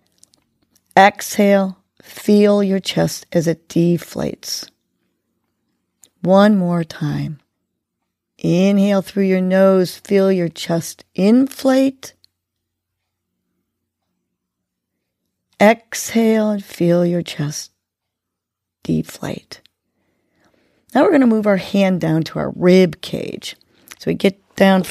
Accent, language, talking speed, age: American, English, 95 wpm, 40-59